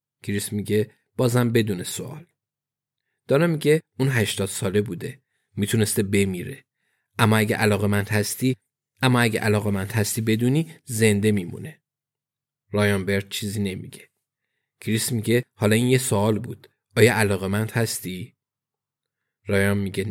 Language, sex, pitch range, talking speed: Persian, male, 105-130 Hz, 120 wpm